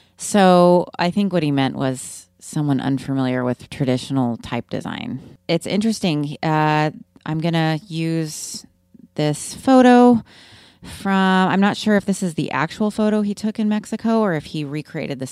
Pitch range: 145-185 Hz